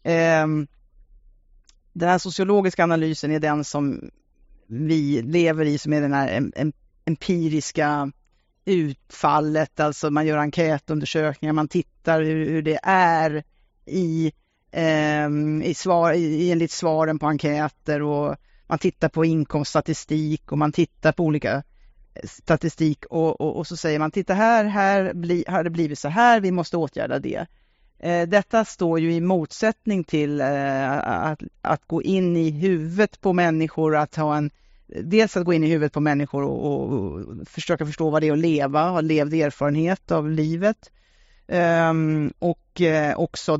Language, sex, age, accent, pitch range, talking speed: Swedish, female, 30-49, Norwegian, 150-170 Hz, 145 wpm